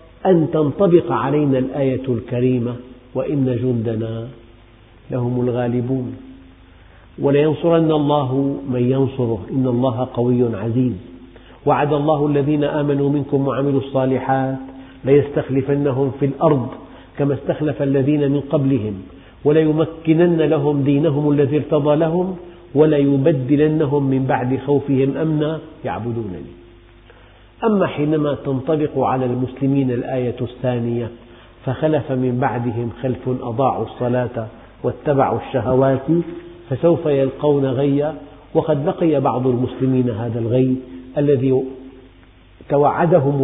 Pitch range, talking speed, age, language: 125-150 Hz, 100 wpm, 50-69, Arabic